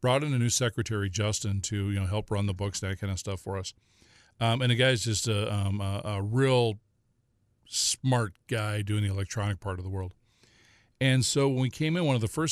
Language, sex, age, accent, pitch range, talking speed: English, male, 40-59, American, 105-120 Hz, 235 wpm